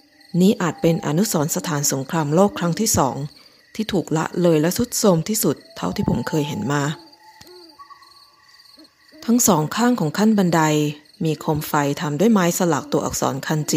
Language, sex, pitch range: Thai, female, 155-235 Hz